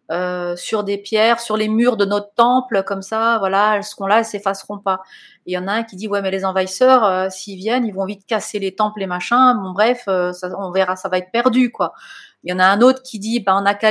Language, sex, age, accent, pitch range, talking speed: French, female, 30-49, French, 195-230 Hz, 285 wpm